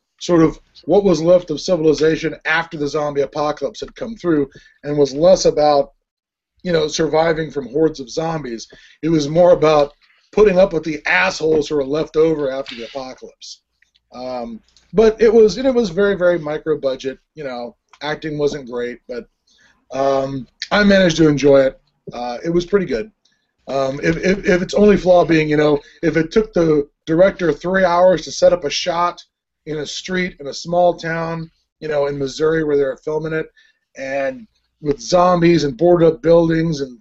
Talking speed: 185 wpm